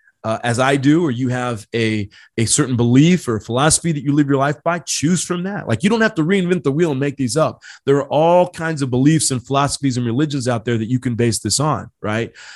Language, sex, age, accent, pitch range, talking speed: English, male, 30-49, American, 120-150 Hz, 255 wpm